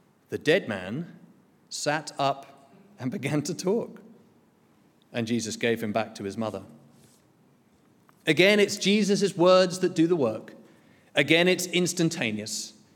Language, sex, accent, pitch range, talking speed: English, male, British, 145-240 Hz, 130 wpm